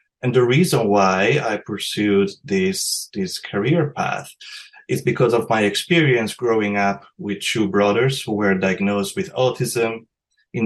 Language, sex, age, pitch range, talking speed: English, male, 30-49, 100-140 Hz, 145 wpm